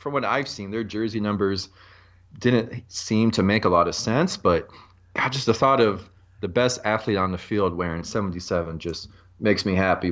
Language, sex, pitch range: English, male, 95-120 Hz